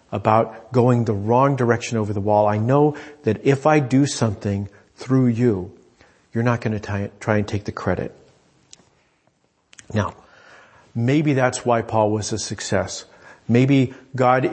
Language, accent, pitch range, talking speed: English, American, 110-135 Hz, 150 wpm